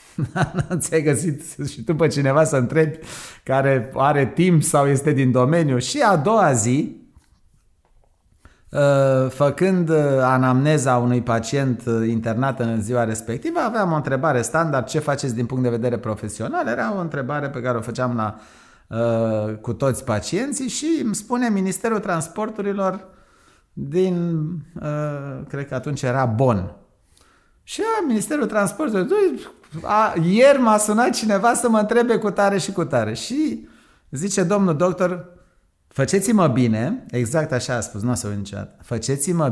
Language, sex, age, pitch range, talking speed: Romanian, male, 30-49, 125-190 Hz, 140 wpm